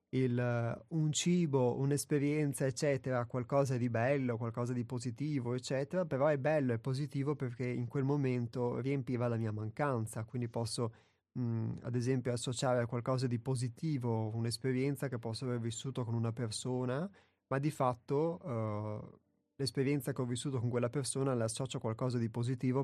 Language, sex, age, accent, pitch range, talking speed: Italian, male, 30-49, native, 120-140 Hz, 150 wpm